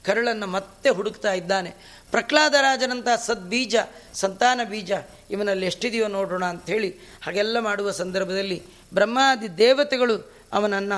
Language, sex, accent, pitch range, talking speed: Kannada, female, native, 205-255 Hz, 100 wpm